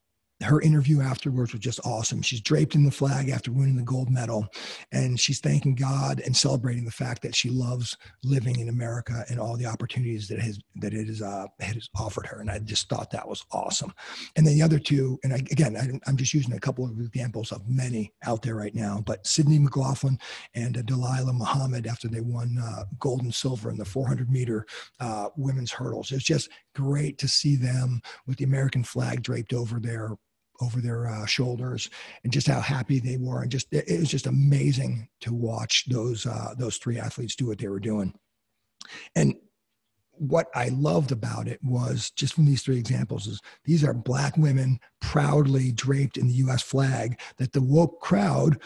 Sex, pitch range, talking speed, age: male, 115-135 Hz, 200 wpm, 40-59